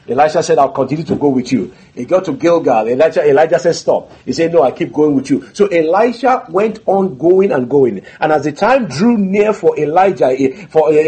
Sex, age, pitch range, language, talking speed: male, 50-69, 140-205 Hz, English, 220 wpm